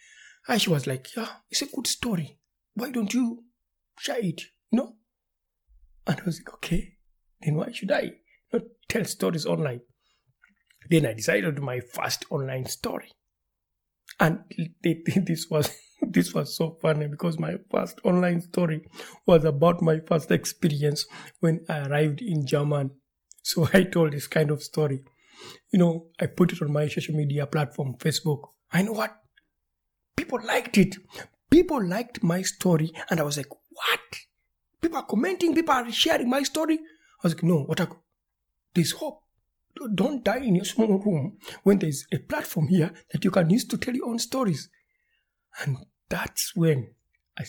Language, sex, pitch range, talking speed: English, male, 150-215 Hz, 170 wpm